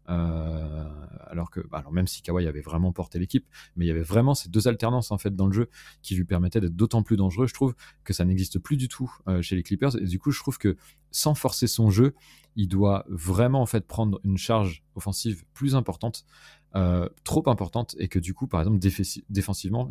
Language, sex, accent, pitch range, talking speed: French, male, French, 90-115 Hz, 230 wpm